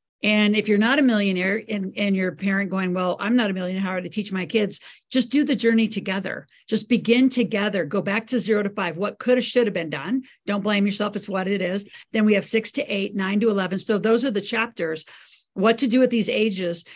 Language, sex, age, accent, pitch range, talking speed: English, female, 50-69, American, 185-225 Hz, 250 wpm